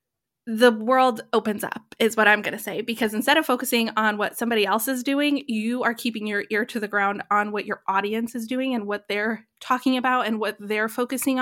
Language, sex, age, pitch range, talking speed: English, female, 20-39, 210-245 Hz, 225 wpm